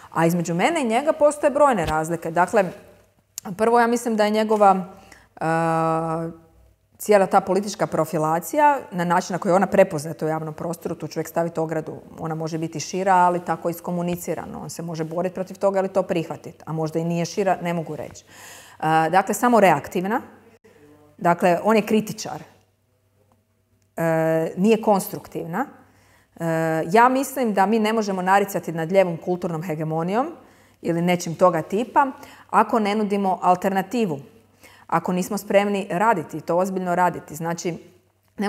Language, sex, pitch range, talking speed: Croatian, female, 160-205 Hz, 150 wpm